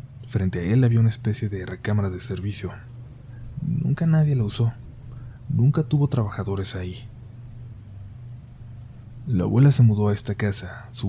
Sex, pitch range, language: male, 100-120 Hz, Spanish